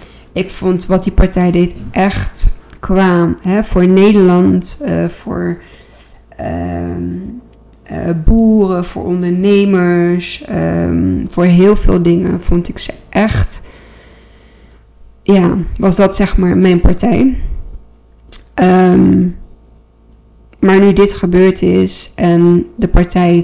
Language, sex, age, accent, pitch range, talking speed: Dutch, female, 20-39, Dutch, 175-190 Hz, 100 wpm